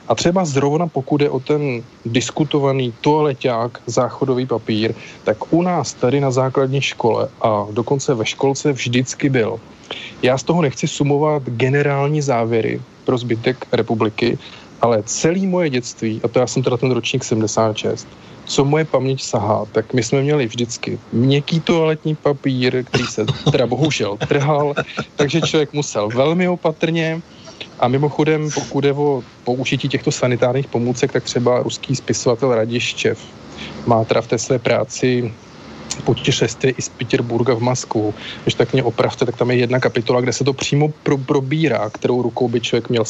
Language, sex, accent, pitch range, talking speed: Czech, male, native, 120-150 Hz, 160 wpm